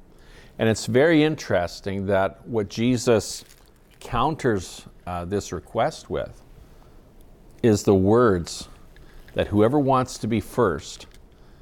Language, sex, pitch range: English, male, 85-115 Hz